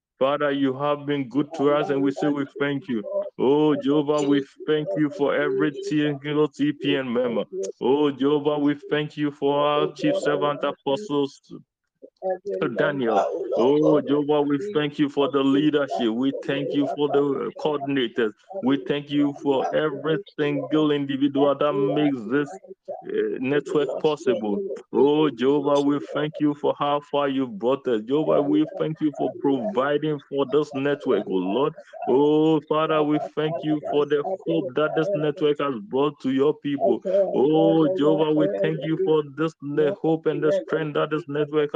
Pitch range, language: 140-155 Hz, English